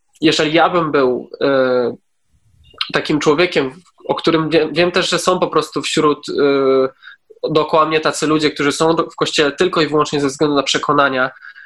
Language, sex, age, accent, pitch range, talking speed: Polish, male, 20-39, native, 145-160 Hz, 160 wpm